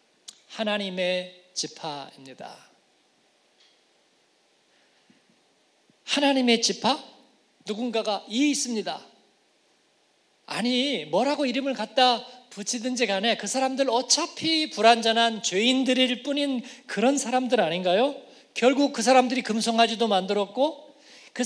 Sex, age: male, 40-59